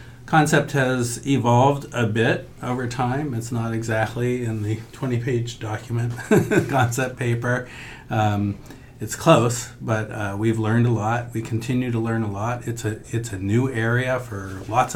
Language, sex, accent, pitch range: English, male, American, 105-125 Hz